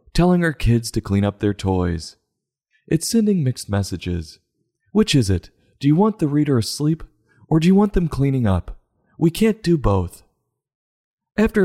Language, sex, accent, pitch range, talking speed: English, male, American, 95-140 Hz, 170 wpm